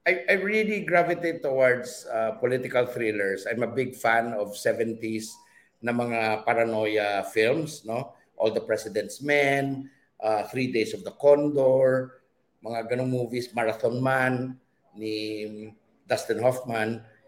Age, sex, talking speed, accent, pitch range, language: 50-69, male, 125 wpm, Filipino, 115-145 Hz, English